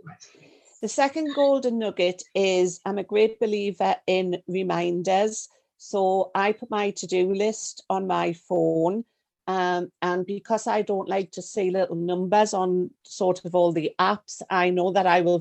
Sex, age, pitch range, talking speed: female, 40-59, 180-210 Hz, 160 wpm